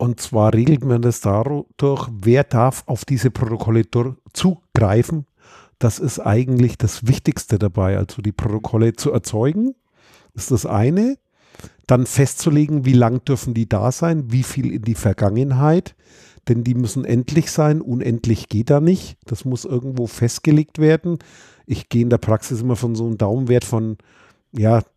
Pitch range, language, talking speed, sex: 115-140 Hz, German, 155 wpm, male